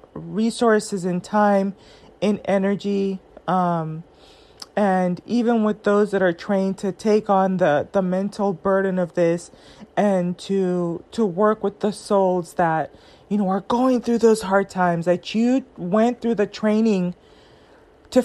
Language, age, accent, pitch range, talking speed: English, 20-39, American, 180-215 Hz, 150 wpm